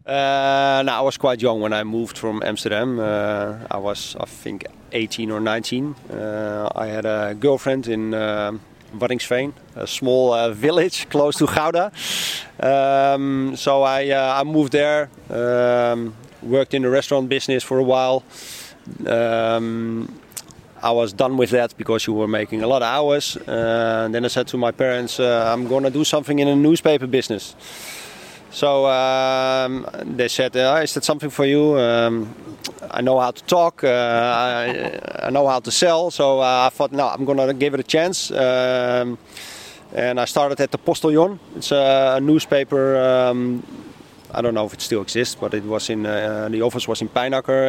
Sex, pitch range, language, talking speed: male, 115-140 Hz, English, 180 wpm